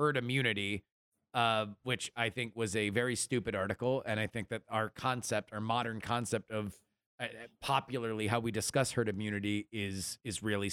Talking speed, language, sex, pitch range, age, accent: 175 wpm, English, male, 110-135 Hz, 30-49, American